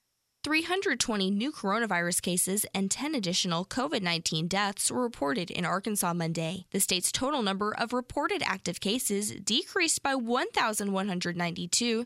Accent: American